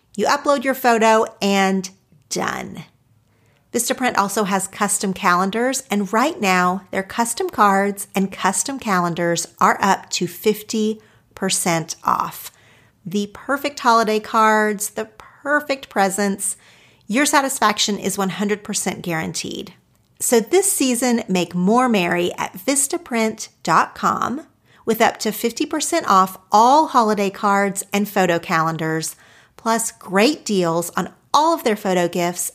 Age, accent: 40-59, American